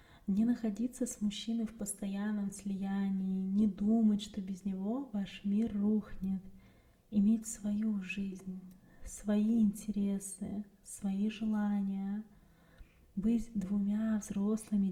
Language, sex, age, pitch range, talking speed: Russian, female, 20-39, 190-215 Hz, 100 wpm